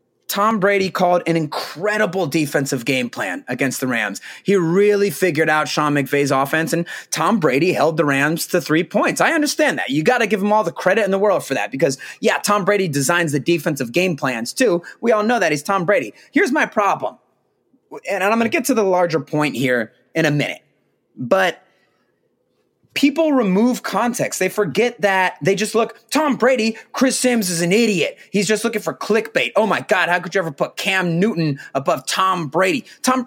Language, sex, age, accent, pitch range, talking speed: English, male, 30-49, American, 170-235 Hz, 200 wpm